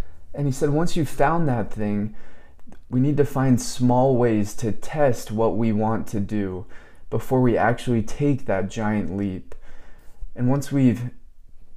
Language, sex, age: English, male, 20-39